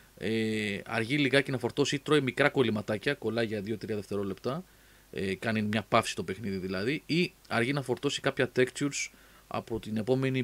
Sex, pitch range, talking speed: male, 105-135 Hz, 160 wpm